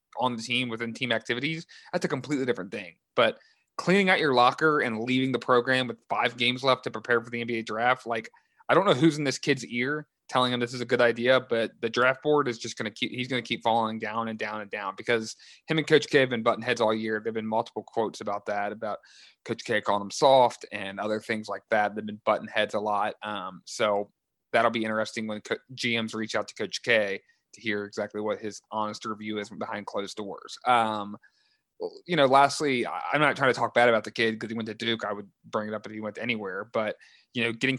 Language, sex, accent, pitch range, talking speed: English, male, American, 110-125 Hz, 245 wpm